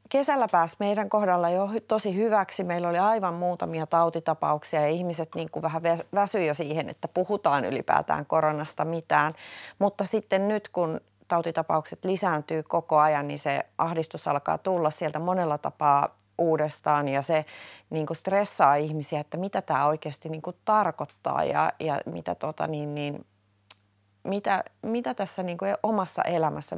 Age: 30-49